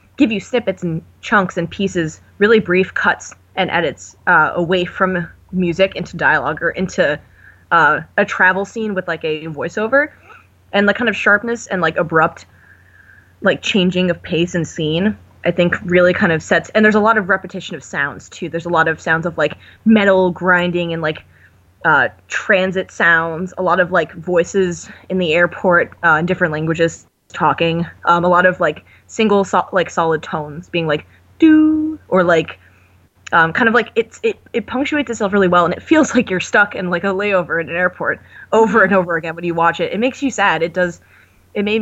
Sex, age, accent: female, 20-39, American